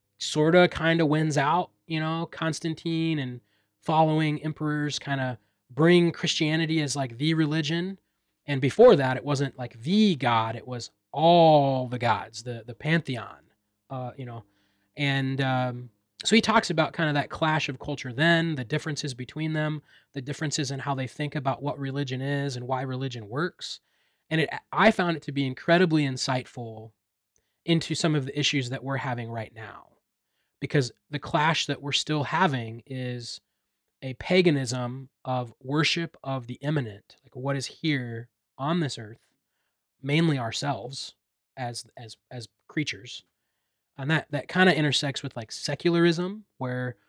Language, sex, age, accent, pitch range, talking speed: English, male, 20-39, American, 125-155 Hz, 160 wpm